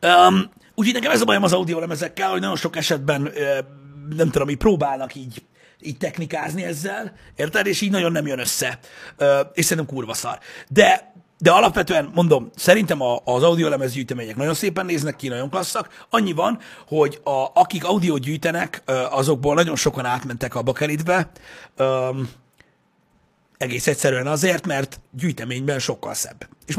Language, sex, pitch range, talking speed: Hungarian, male, 130-185 Hz, 150 wpm